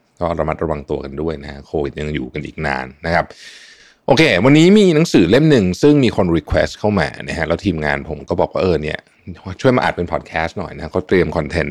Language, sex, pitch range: Thai, male, 75-105 Hz